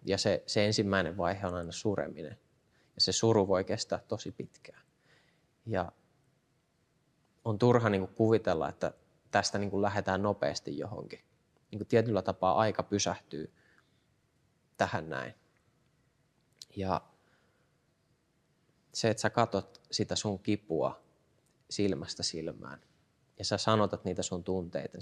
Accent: native